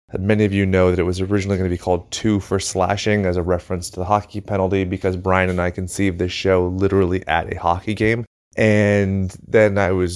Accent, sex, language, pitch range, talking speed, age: American, male, English, 95-120 Hz, 225 wpm, 20-39